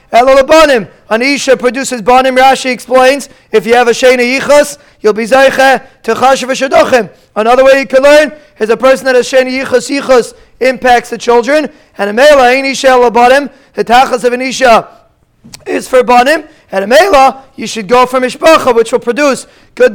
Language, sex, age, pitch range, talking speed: English, male, 30-49, 245-280 Hz, 170 wpm